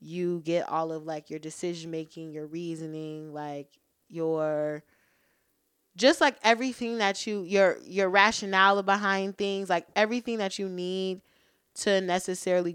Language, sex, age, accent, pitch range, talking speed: English, female, 20-39, American, 165-195 Hz, 130 wpm